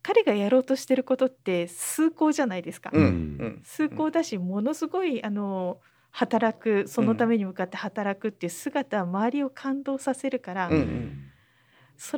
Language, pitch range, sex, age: Japanese, 185-290 Hz, female, 40-59